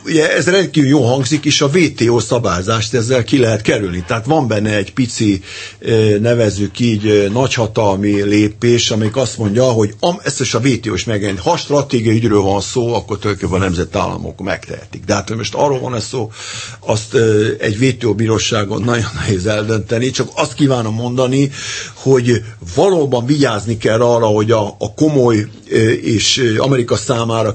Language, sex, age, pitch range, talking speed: Hungarian, male, 50-69, 105-125 Hz, 155 wpm